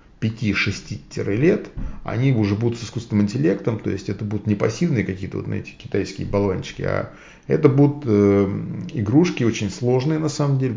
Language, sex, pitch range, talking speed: Russian, male, 100-130 Hz, 155 wpm